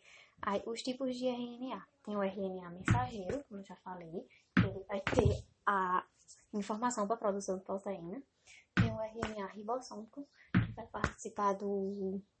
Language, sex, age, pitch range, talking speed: English, female, 20-39, 195-225 Hz, 135 wpm